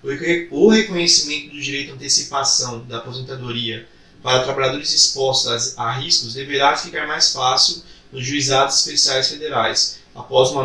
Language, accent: Portuguese, Brazilian